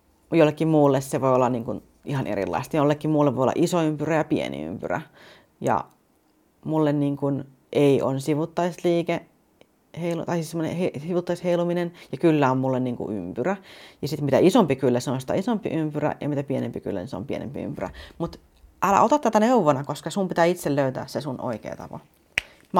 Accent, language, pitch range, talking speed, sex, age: native, Finnish, 135-180 Hz, 175 wpm, female, 30-49